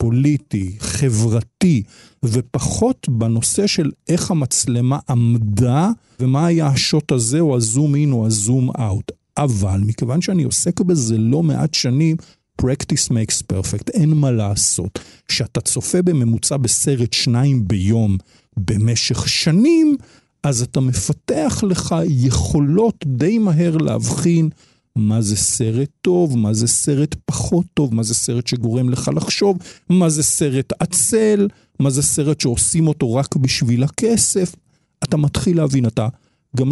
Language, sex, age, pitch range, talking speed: Hebrew, male, 50-69, 115-170 Hz, 130 wpm